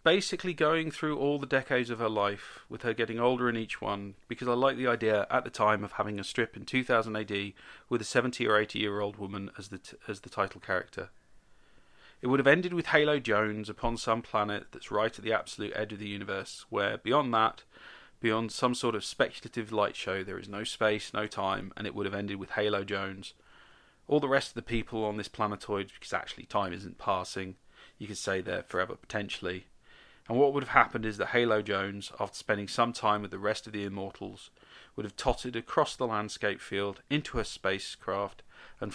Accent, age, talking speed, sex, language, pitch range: British, 40-59, 215 wpm, male, English, 100-120 Hz